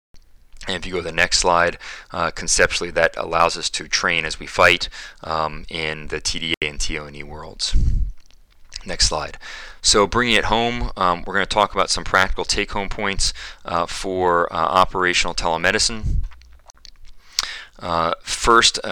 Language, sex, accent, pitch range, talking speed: English, male, American, 85-100 Hz, 150 wpm